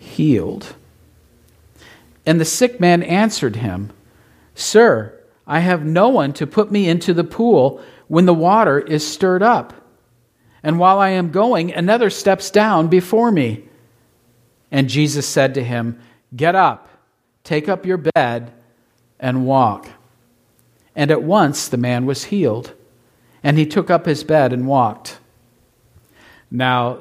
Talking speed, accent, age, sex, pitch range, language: 140 wpm, American, 50-69, male, 120-175 Hz, English